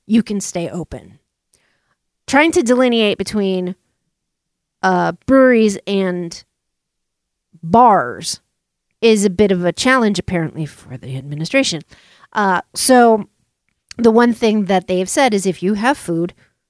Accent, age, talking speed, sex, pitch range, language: American, 40-59, 125 wpm, female, 185-255 Hz, English